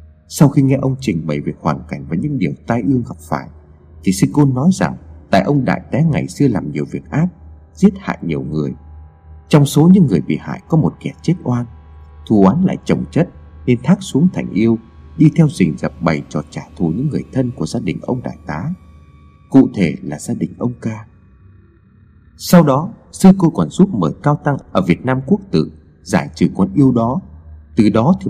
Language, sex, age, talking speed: Vietnamese, male, 30-49, 215 wpm